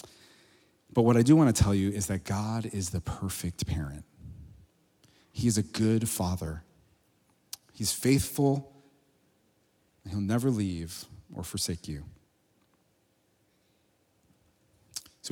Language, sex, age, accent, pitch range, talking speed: English, male, 30-49, American, 105-150 Hz, 120 wpm